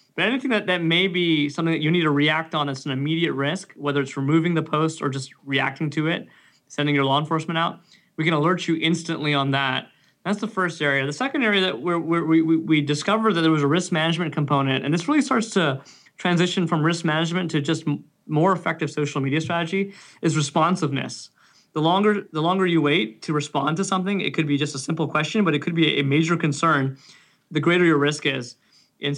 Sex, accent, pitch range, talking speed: male, American, 145-165 Hz, 220 wpm